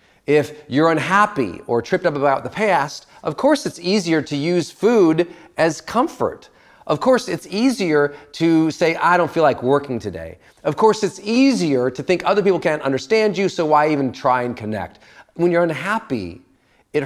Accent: American